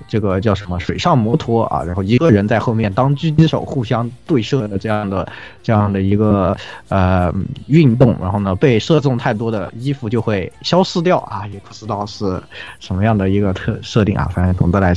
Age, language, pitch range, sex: 20-39, Chinese, 95-125 Hz, male